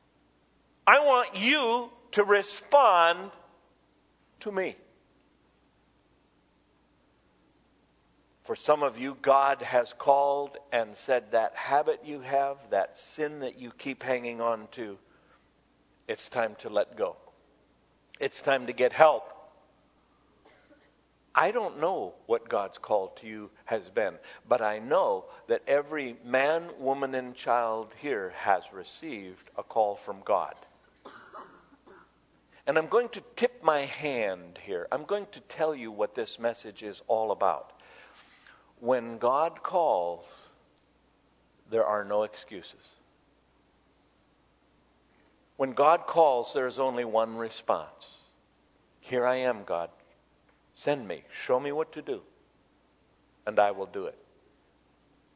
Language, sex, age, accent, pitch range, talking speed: English, male, 50-69, American, 115-190 Hz, 125 wpm